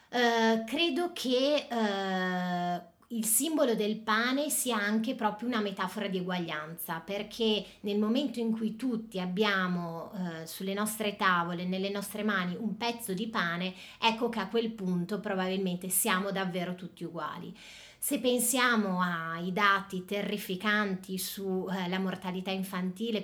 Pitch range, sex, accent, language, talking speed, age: 180-215 Hz, female, native, Italian, 135 wpm, 30-49